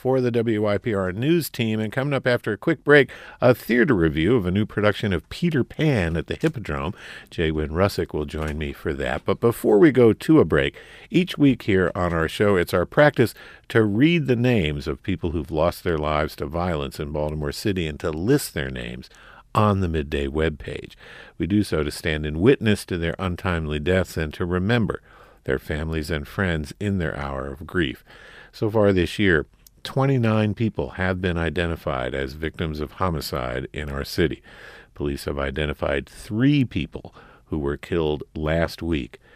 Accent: American